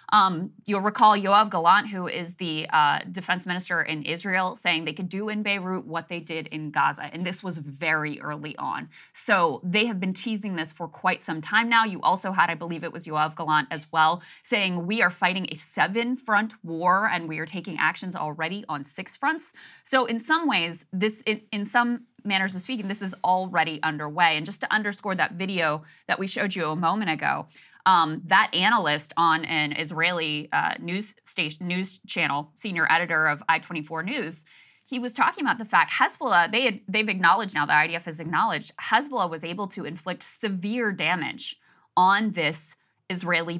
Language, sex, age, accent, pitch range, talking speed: English, female, 20-39, American, 160-210 Hz, 190 wpm